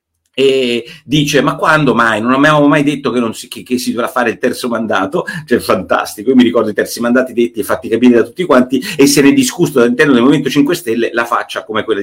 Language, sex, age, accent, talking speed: Italian, male, 40-59, native, 245 wpm